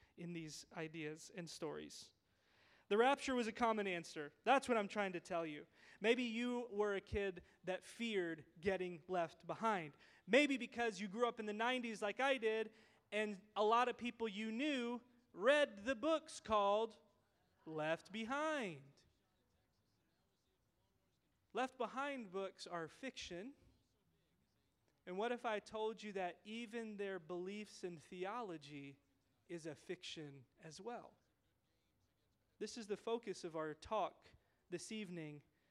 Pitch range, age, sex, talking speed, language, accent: 170-235 Hz, 30-49, male, 140 wpm, English, American